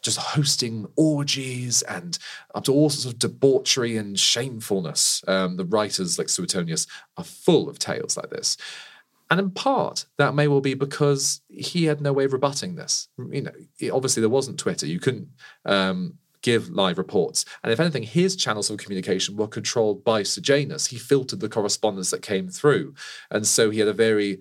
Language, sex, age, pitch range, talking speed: English, male, 40-59, 105-155 Hz, 180 wpm